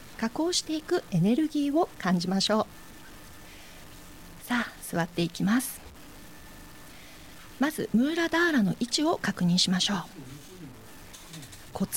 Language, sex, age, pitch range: Japanese, female, 40-59, 185-280 Hz